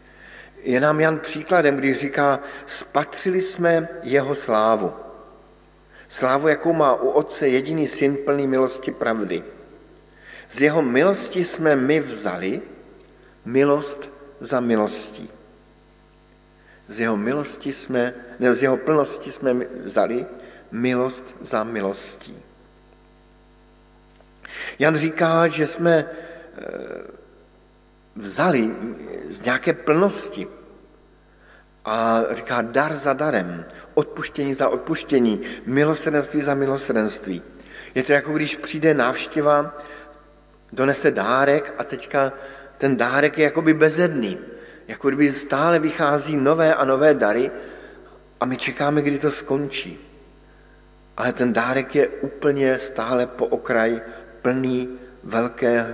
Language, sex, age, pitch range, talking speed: Slovak, male, 50-69, 125-150 Hz, 105 wpm